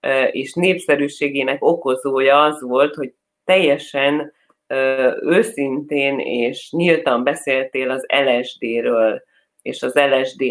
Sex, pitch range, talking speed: female, 125-150 Hz, 90 wpm